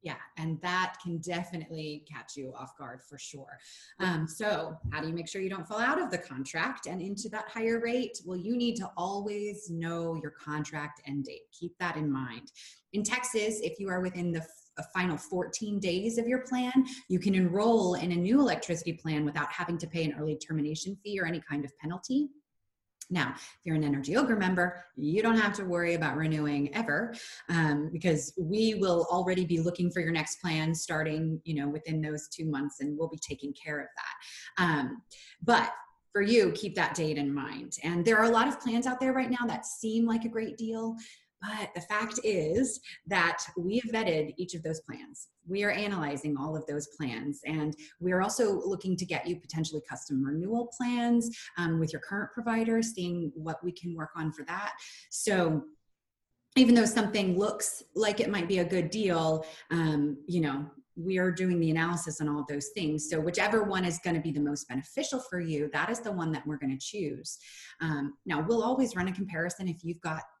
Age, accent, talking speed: 20-39, American, 205 wpm